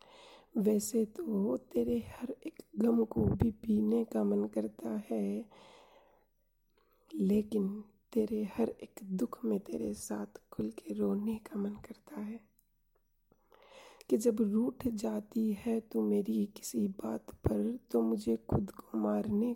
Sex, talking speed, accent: female, 130 wpm, native